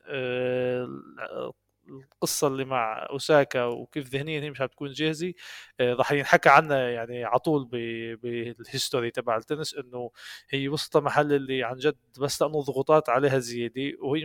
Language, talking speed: Arabic, 135 wpm